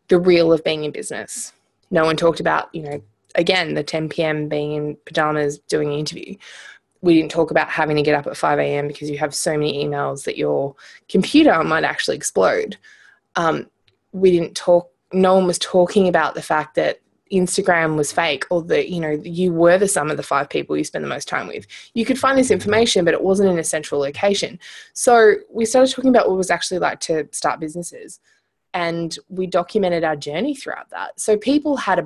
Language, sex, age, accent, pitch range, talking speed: English, female, 20-39, Australian, 160-200 Hz, 215 wpm